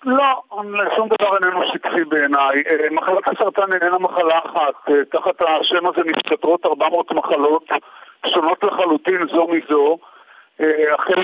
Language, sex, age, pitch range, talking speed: Hebrew, male, 40-59, 150-185 Hz, 115 wpm